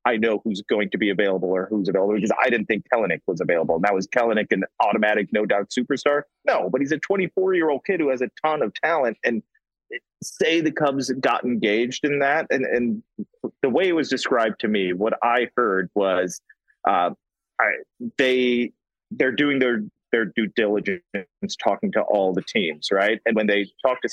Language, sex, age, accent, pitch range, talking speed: English, male, 30-49, American, 110-170 Hz, 195 wpm